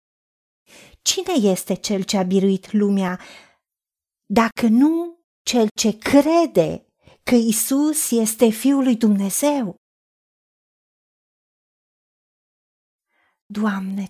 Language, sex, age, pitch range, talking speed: Romanian, female, 40-59, 220-275 Hz, 80 wpm